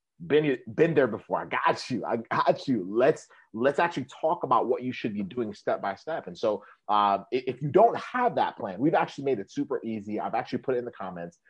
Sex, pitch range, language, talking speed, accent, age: male, 115-175 Hz, English, 235 wpm, American, 30-49